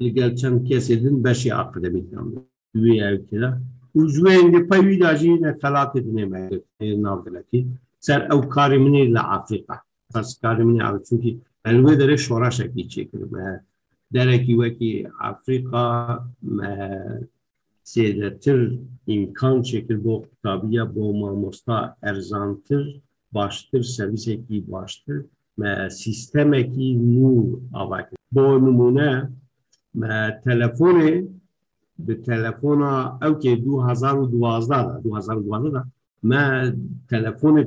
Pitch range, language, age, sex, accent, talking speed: 110-135 Hz, Turkish, 60-79, male, native, 60 wpm